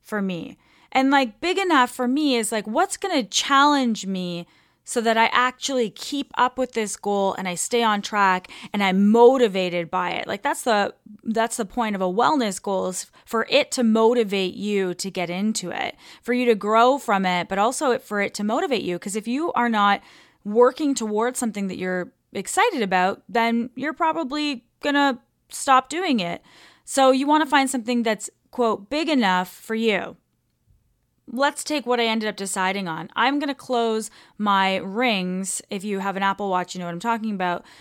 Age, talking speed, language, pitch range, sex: 20-39, 195 wpm, English, 190-250 Hz, female